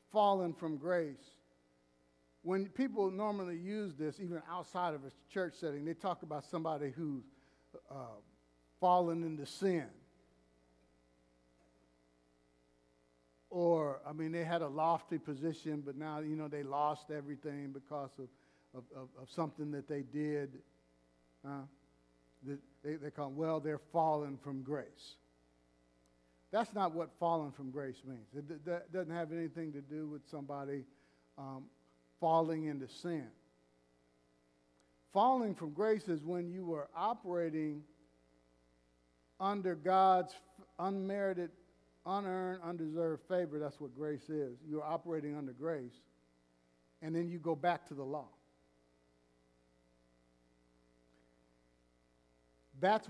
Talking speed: 125 wpm